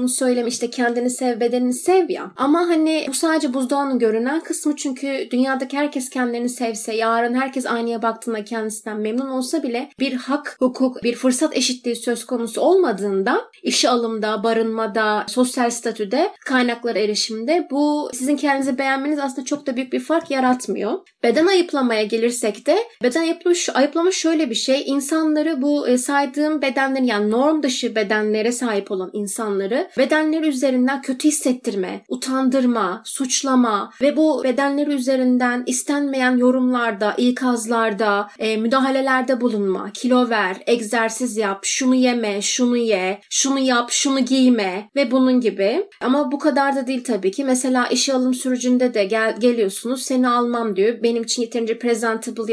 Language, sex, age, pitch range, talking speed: Turkish, female, 30-49, 225-275 Hz, 145 wpm